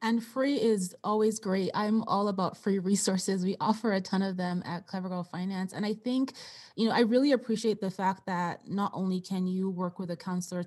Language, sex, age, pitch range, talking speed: English, female, 20-39, 175-200 Hz, 220 wpm